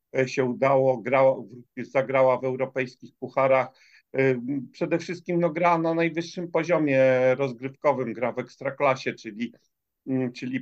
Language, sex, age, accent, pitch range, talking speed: Polish, male, 50-69, native, 130-155 Hz, 115 wpm